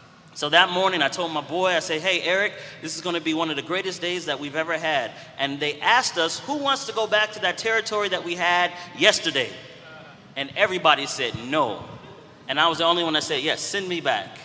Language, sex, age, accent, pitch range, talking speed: English, male, 30-49, American, 150-185 Hz, 235 wpm